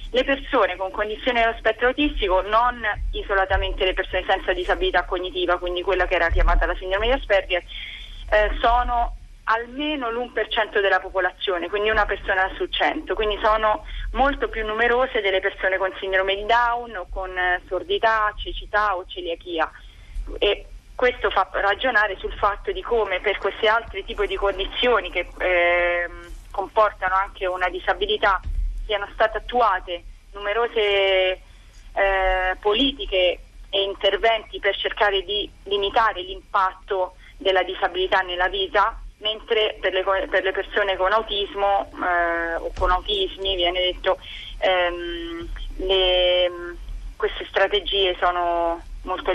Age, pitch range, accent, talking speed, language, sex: 30-49, 185-215 Hz, native, 130 wpm, Italian, female